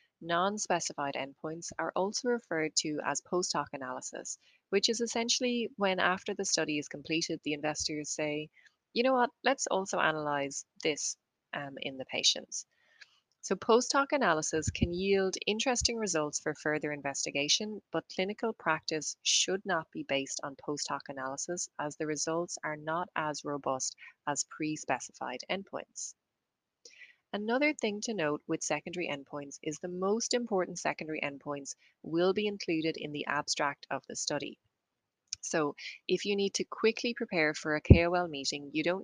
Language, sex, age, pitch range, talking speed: English, female, 30-49, 150-195 Hz, 150 wpm